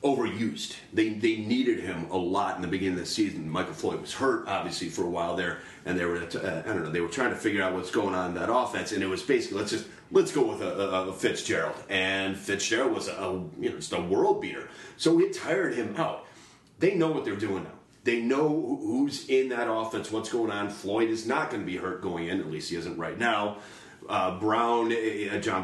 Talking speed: 240 wpm